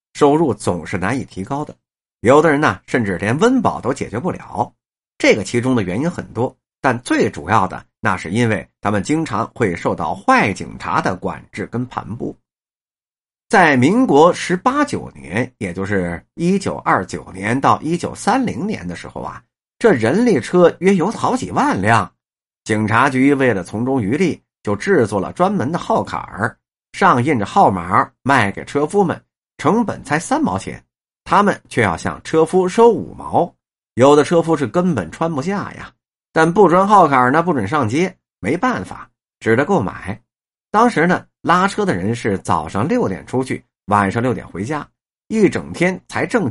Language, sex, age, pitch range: Chinese, male, 50-69, 105-175 Hz